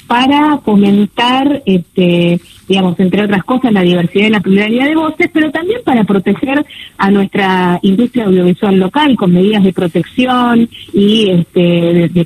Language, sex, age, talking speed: Spanish, female, 30-49, 140 wpm